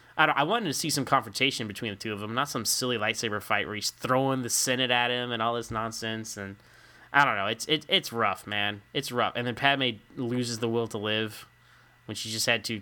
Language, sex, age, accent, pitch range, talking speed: English, male, 10-29, American, 110-135 Hz, 250 wpm